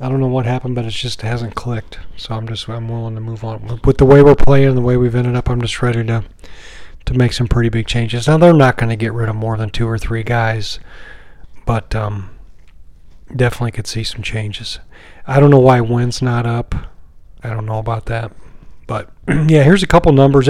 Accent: American